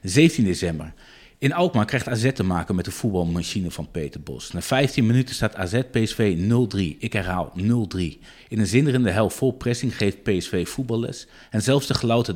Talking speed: 175 wpm